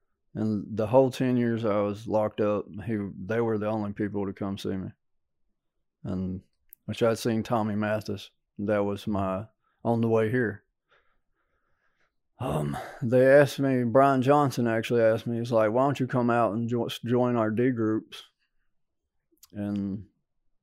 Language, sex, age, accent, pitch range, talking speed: English, male, 20-39, American, 105-130 Hz, 155 wpm